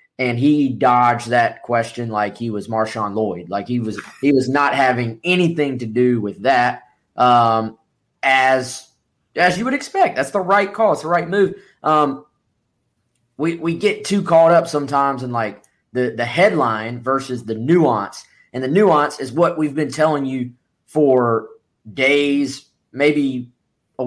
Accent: American